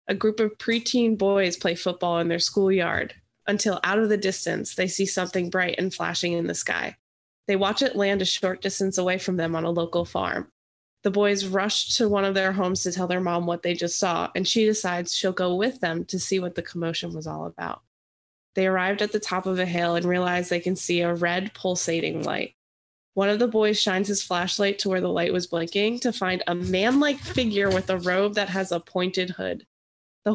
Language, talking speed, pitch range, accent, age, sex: English, 225 wpm, 175-210 Hz, American, 20-39, female